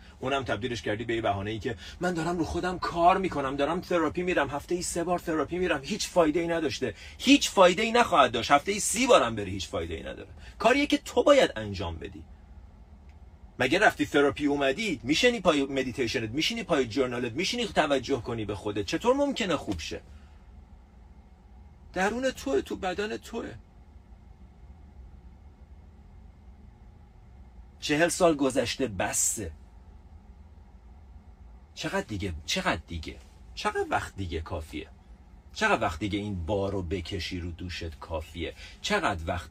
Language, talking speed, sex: Persian, 140 wpm, male